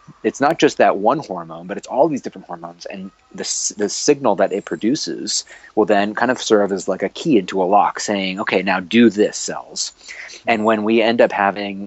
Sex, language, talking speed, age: male, English, 215 wpm, 30-49